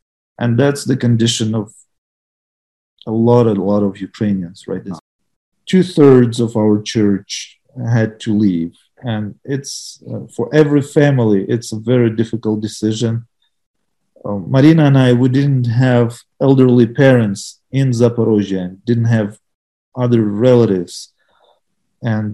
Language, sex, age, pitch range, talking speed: English, male, 40-59, 105-130 Hz, 125 wpm